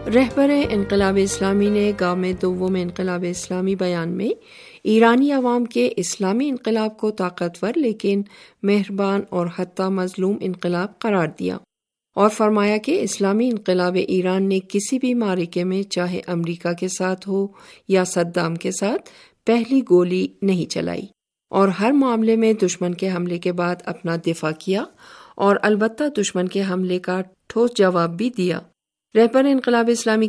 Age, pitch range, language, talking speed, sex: 50-69, 180-220 Hz, Urdu, 150 wpm, female